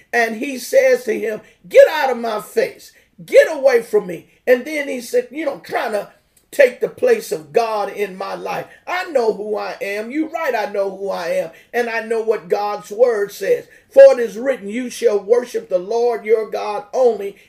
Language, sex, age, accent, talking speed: English, male, 50-69, American, 210 wpm